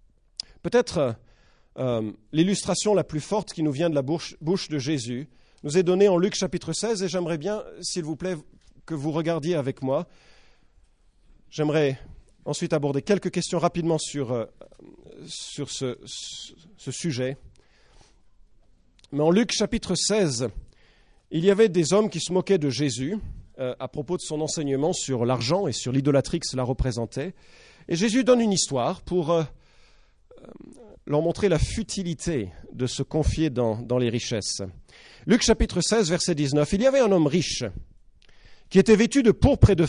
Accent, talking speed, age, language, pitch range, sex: French, 165 wpm, 40-59, English, 125-180 Hz, male